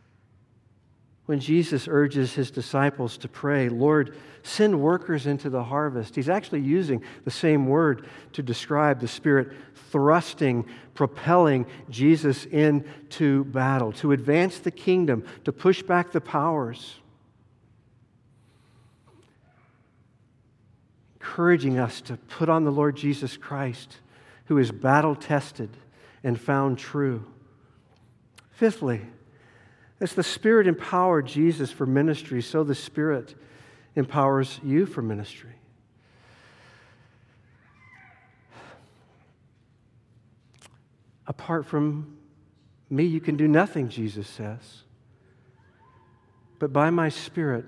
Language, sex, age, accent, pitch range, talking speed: English, male, 50-69, American, 120-150 Hz, 100 wpm